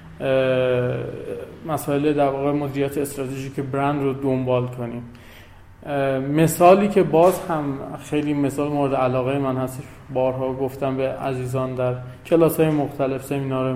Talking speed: 120 wpm